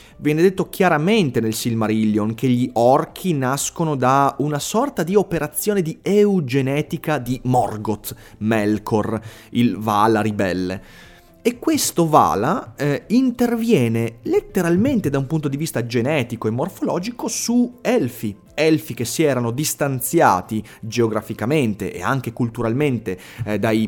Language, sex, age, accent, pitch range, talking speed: Italian, male, 30-49, native, 110-170 Hz, 125 wpm